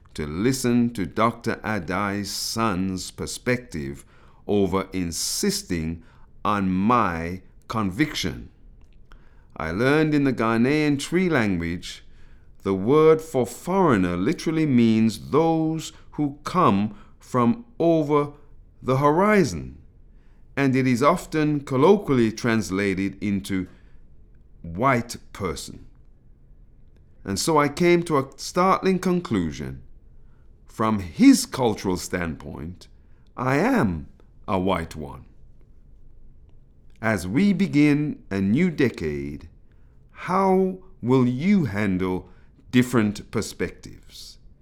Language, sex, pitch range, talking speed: English, male, 90-145 Hz, 95 wpm